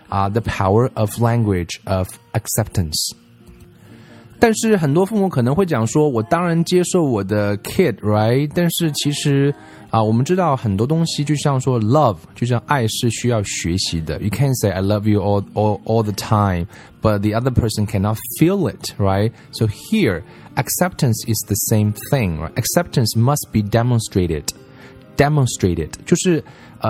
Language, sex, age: Chinese, male, 20-39